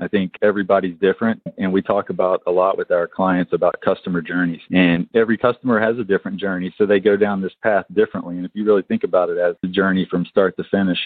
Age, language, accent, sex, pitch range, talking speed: 40-59, English, American, male, 90-120 Hz, 240 wpm